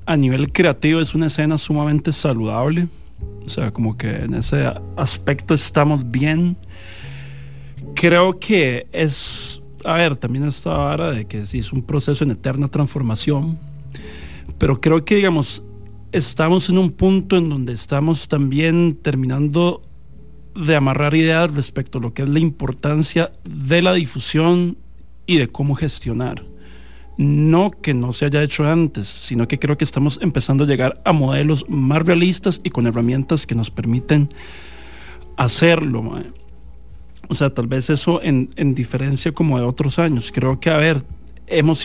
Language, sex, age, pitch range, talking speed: English, male, 40-59, 115-160 Hz, 155 wpm